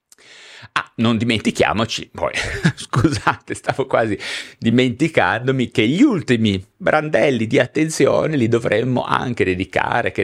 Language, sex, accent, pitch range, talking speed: Italian, male, native, 90-125 Hz, 110 wpm